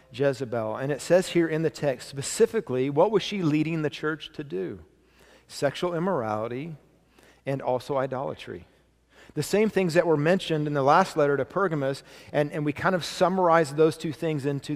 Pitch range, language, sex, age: 120-155 Hz, English, male, 40-59